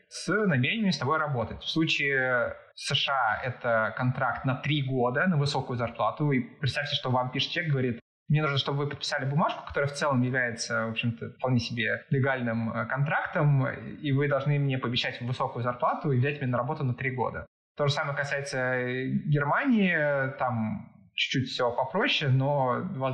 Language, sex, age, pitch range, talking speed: Russian, male, 20-39, 125-150 Hz, 165 wpm